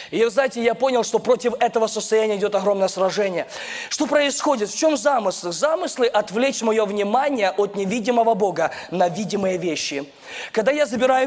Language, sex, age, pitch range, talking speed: Russian, male, 20-39, 225-300 Hz, 155 wpm